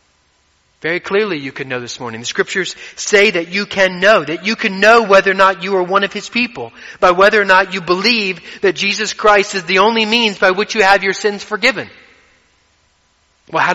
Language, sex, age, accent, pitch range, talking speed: English, male, 30-49, American, 150-210 Hz, 215 wpm